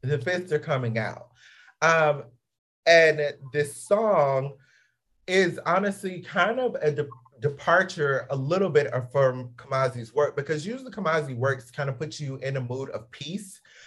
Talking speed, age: 150 wpm, 30-49